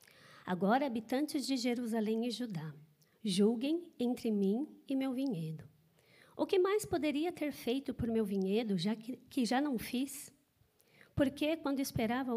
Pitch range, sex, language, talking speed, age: 190-245 Hz, female, Portuguese, 145 wpm, 40-59